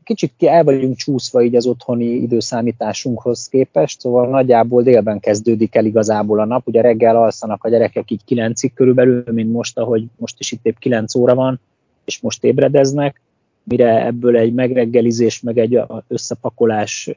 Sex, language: male, Hungarian